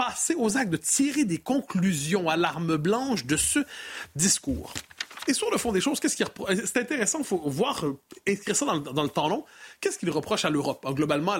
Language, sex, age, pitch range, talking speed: French, male, 30-49, 170-230 Hz, 210 wpm